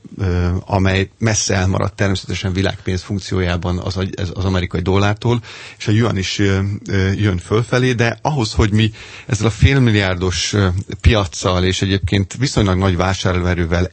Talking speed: 125 wpm